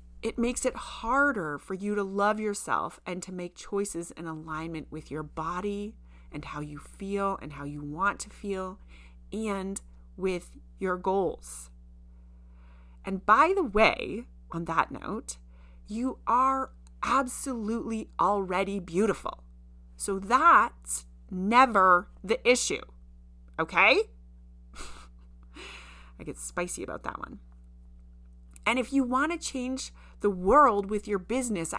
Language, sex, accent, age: English, female, American, 30-49